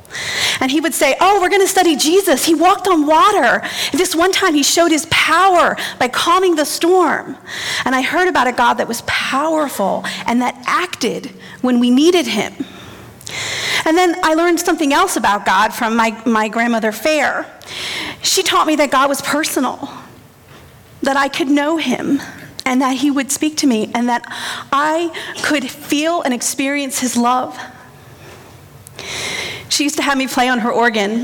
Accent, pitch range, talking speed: American, 240-325 Hz, 175 wpm